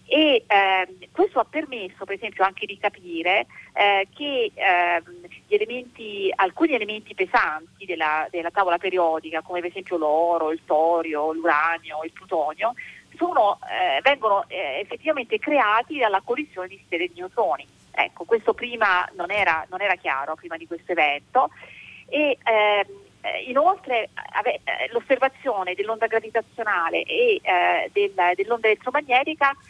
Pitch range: 185-270 Hz